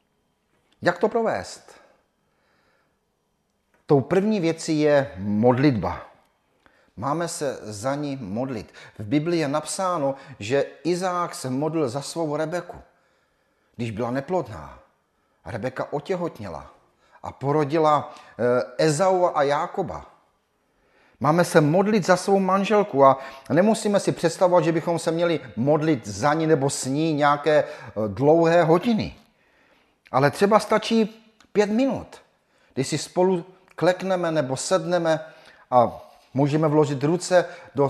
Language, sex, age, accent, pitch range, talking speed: Czech, male, 40-59, native, 135-180 Hz, 115 wpm